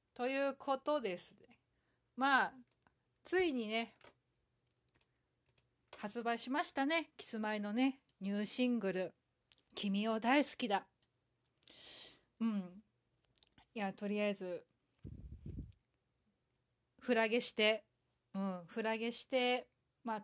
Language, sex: Japanese, female